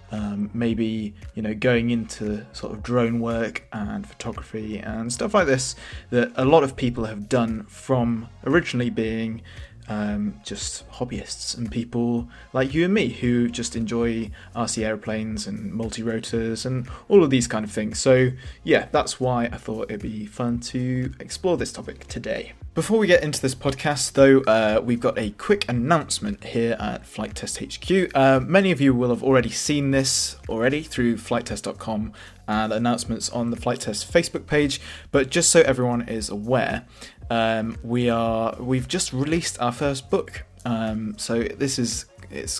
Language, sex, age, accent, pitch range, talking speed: English, male, 20-39, British, 110-130 Hz, 170 wpm